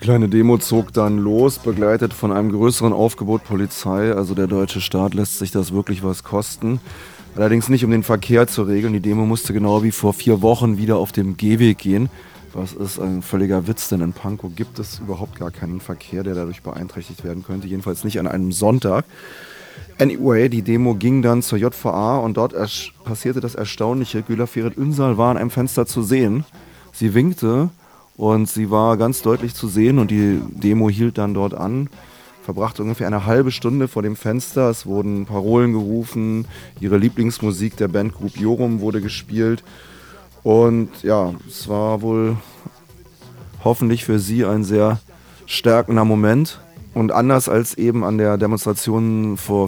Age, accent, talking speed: 30-49, German, 170 wpm